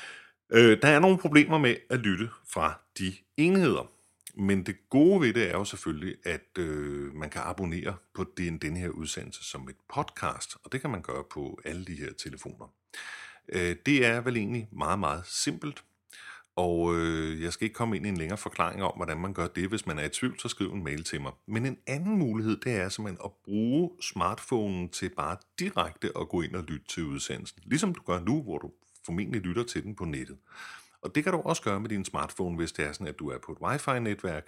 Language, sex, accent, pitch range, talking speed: Danish, male, native, 85-120 Hz, 215 wpm